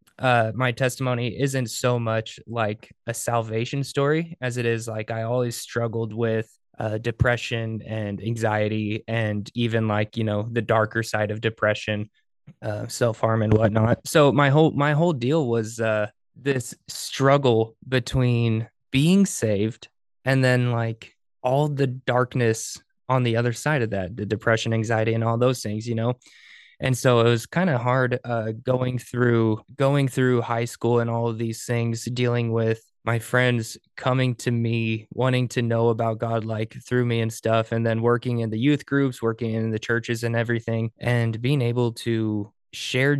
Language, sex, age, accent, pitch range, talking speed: English, male, 20-39, American, 110-125 Hz, 170 wpm